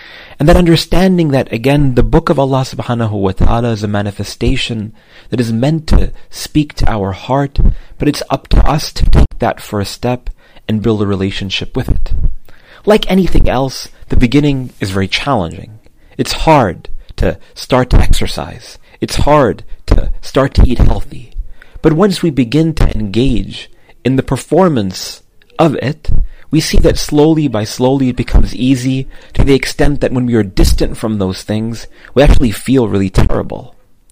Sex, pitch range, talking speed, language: male, 105-140 Hz, 170 wpm, English